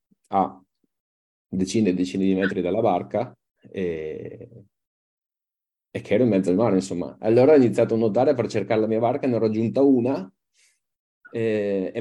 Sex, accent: male, native